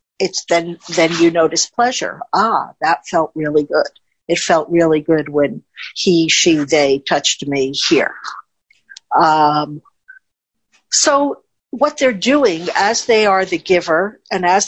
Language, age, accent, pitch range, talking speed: English, 60-79, American, 170-230 Hz, 140 wpm